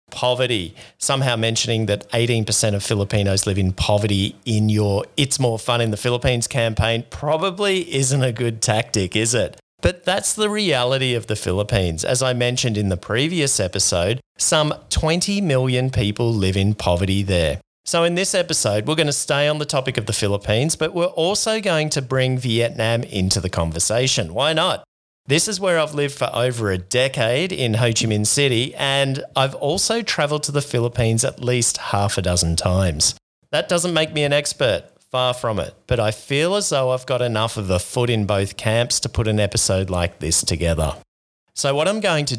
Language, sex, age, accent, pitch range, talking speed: English, male, 30-49, Australian, 105-140 Hz, 195 wpm